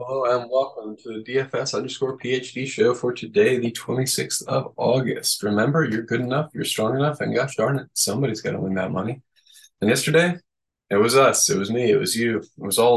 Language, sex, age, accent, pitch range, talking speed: English, male, 20-39, American, 105-135 Hz, 215 wpm